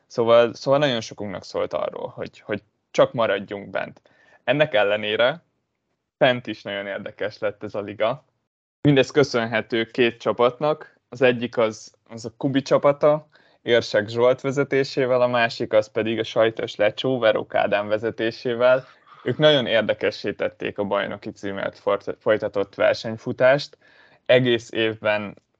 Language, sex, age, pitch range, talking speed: Hungarian, male, 20-39, 105-130 Hz, 125 wpm